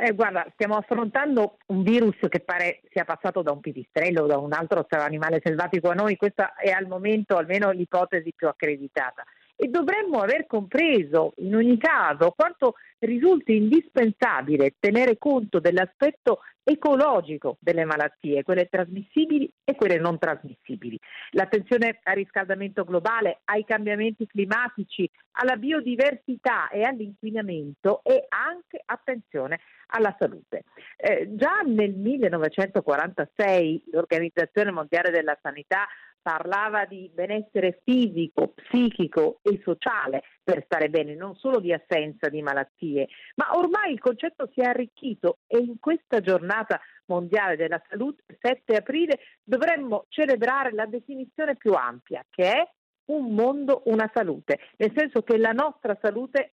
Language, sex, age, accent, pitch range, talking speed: Italian, female, 50-69, native, 175-250 Hz, 135 wpm